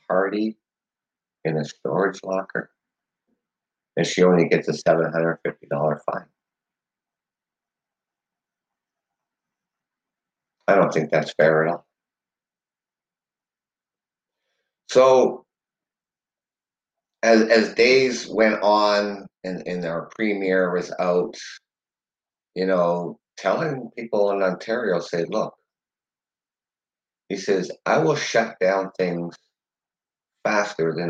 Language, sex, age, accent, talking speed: English, male, 50-69, American, 95 wpm